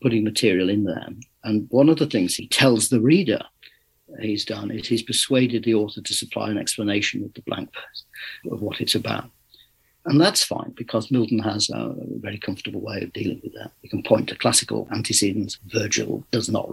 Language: English